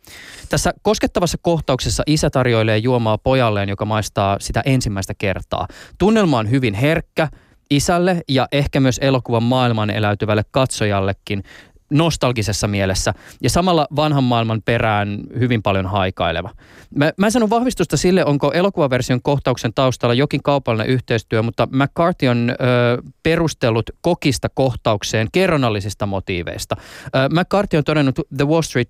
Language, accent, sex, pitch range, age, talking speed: Finnish, native, male, 110-145 Hz, 20-39, 130 wpm